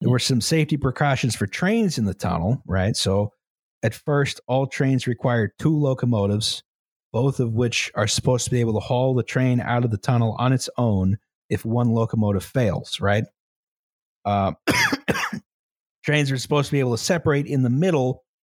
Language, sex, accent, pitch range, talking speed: English, male, American, 110-140 Hz, 180 wpm